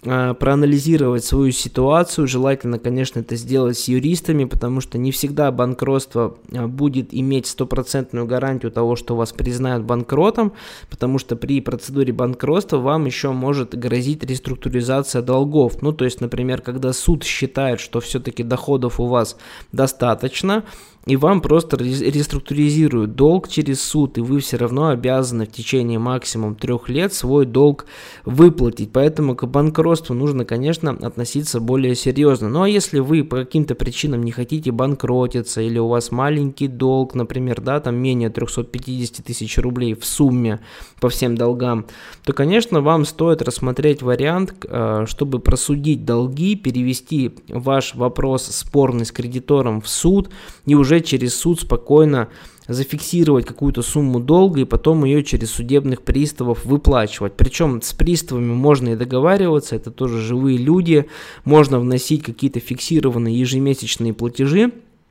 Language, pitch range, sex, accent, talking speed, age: Russian, 120-145 Hz, male, native, 140 wpm, 20-39